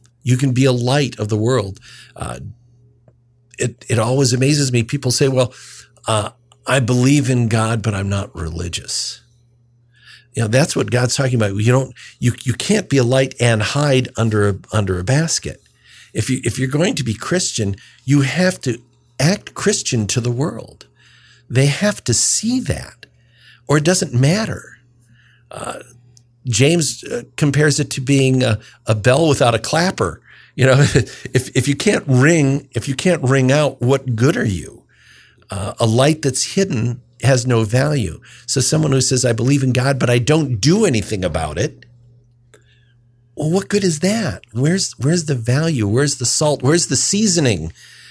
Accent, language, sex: American, English, male